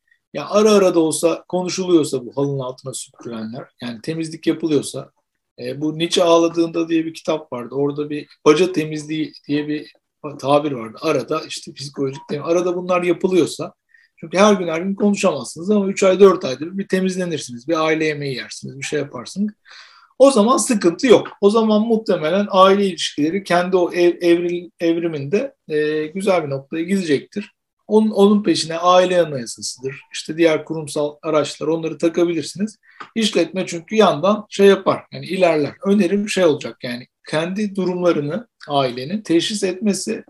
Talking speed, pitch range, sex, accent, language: 155 wpm, 150-195 Hz, male, native, Turkish